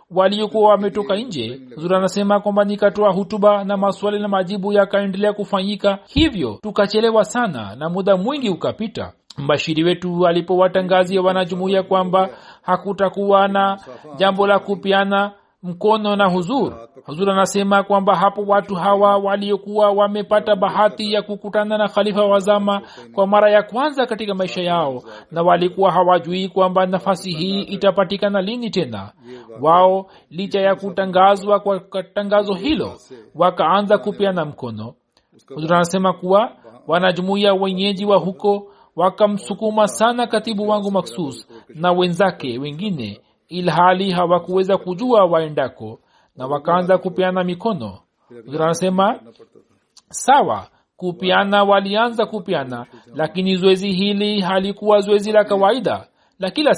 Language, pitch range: Swahili, 180-205 Hz